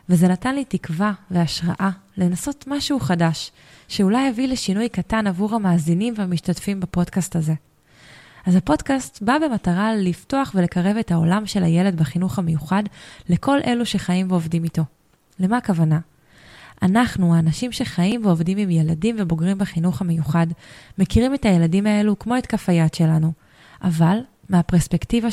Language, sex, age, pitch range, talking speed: Hebrew, female, 20-39, 165-210 Hz, 130 wpm